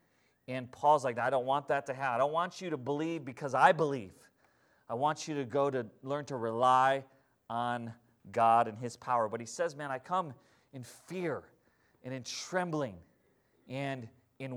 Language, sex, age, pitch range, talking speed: English, male, 30-49, 130-165 Hz, 185 wpm